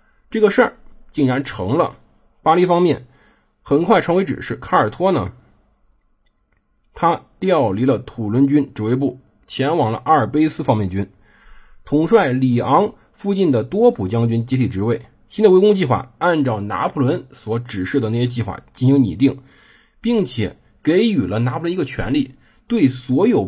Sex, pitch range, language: male, 115-170 Hz, Chinese